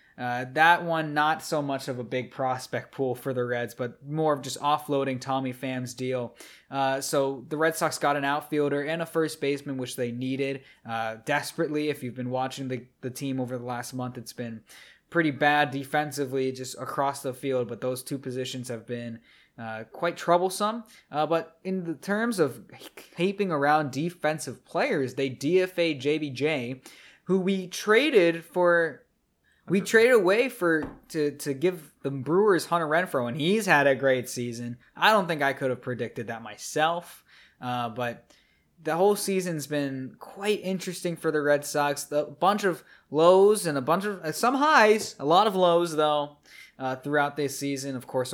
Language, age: English, 20-39